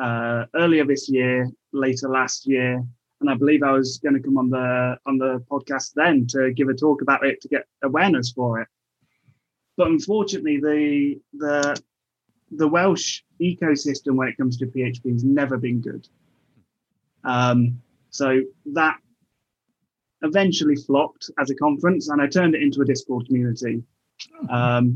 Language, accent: English, British